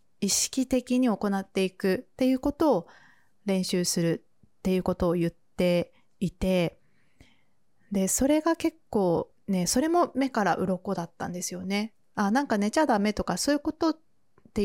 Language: Japanese